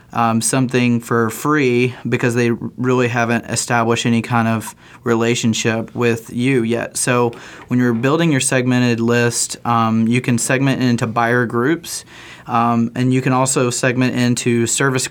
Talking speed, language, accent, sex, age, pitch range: 150 wpm, English, American, male, 20-39, 115-125 Hz